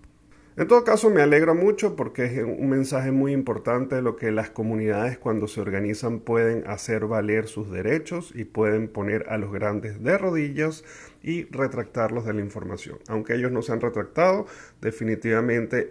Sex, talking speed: male, 170 wpm